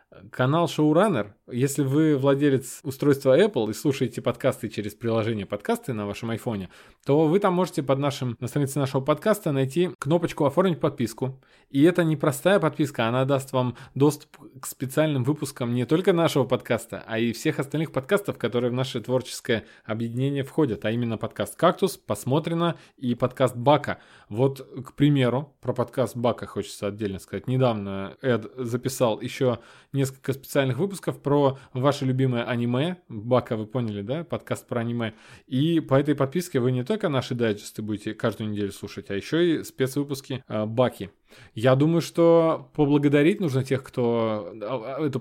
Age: 20-39